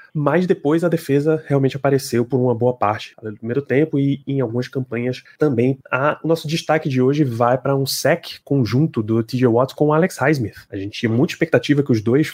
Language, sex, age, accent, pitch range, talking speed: Portuguese, male, 20-39, Brazilian, 110-140 Hz, 215 wpm